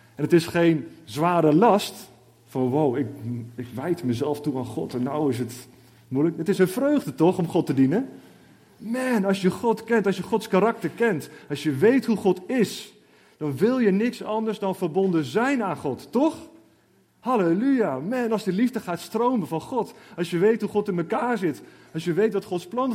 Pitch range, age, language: 125-190 Hz, 30-49, Dutch